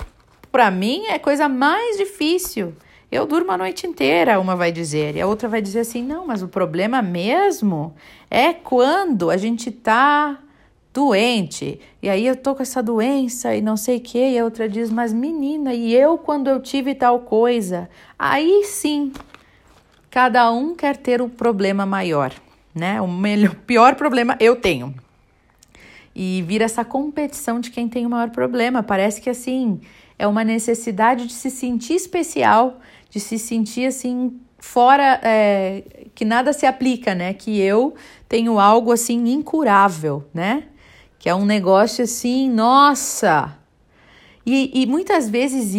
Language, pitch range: Portuguese, 205-265 Hz